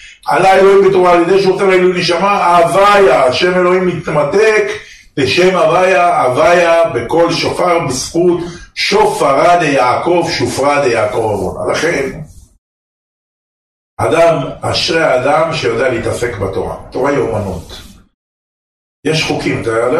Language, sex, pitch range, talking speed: Hebrew, male, 115-165 Hz, 110 wpm